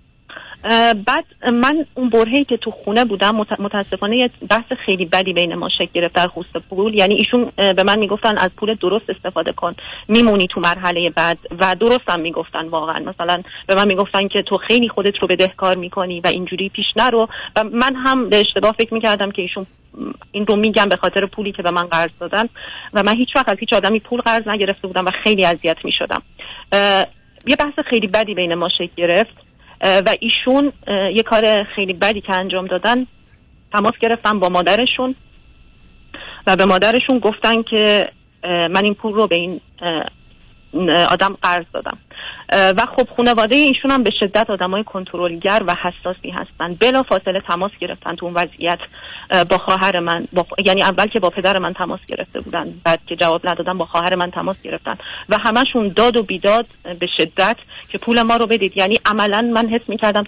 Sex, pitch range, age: female, 180-225 Hz, 40-59